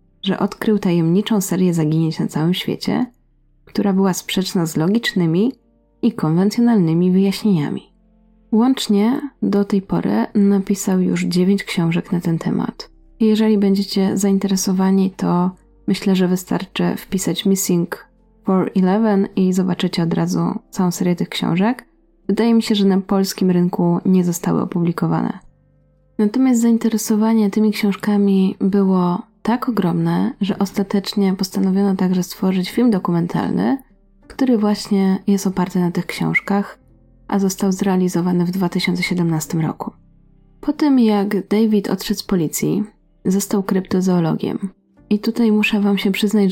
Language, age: Polish, 20-39